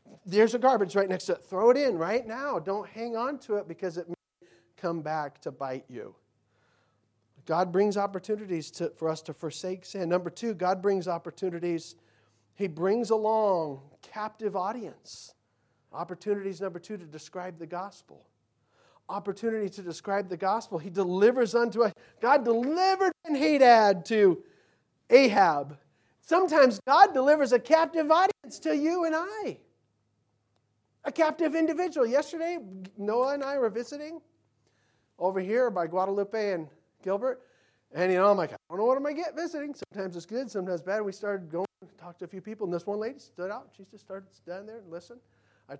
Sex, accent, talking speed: male, American, 175 wpm